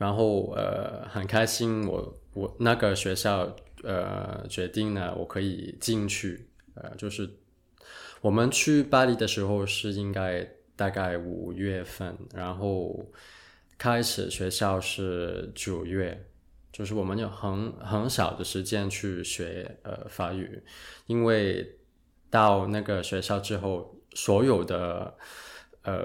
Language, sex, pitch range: Chinese, male, 95-110 Hz